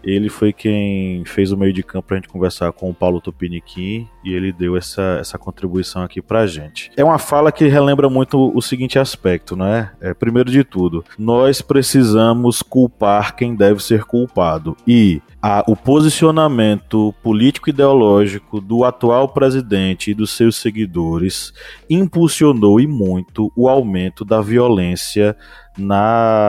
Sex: male